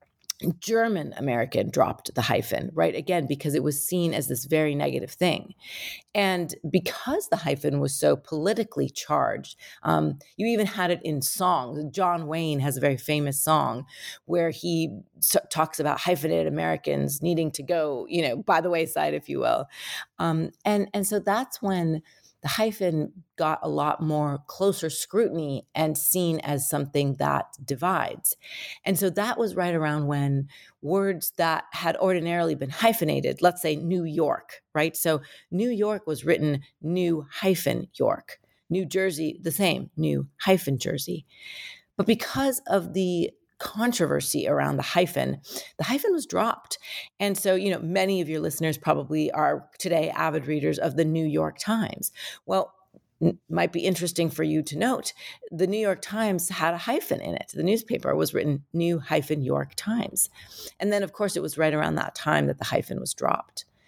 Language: English